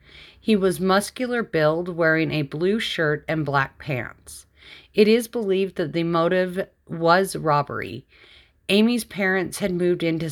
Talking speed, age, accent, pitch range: 140 wpm, 40-59, American, 155-195 Hz